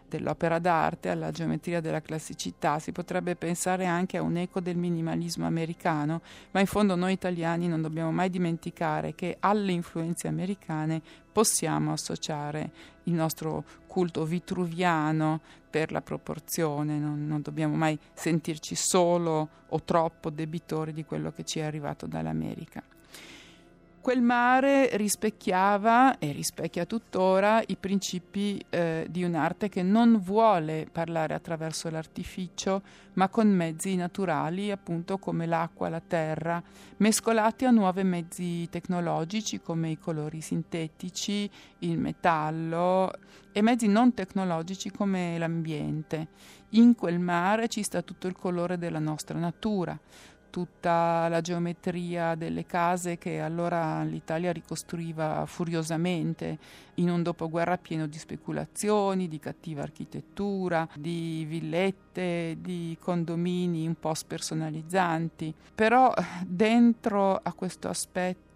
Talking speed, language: 120 wpm, Italian